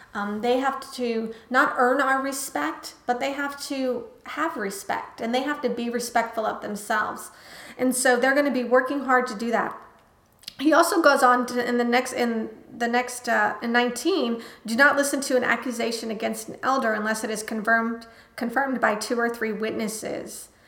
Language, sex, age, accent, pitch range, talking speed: English, female, 30-49, American, 225-255 Hz, 190 wpm